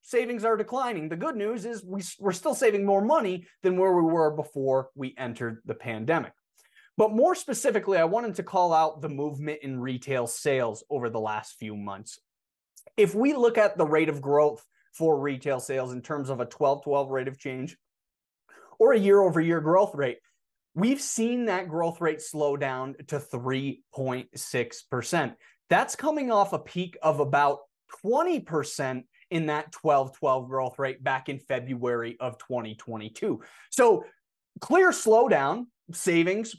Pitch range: 135-200 Hz